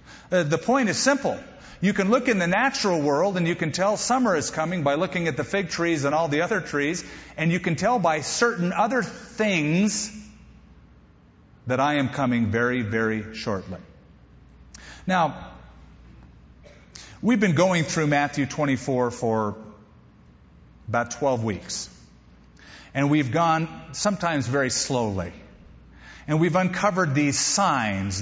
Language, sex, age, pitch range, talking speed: English, male, 40-59, 115-185 Hz, 140 wpm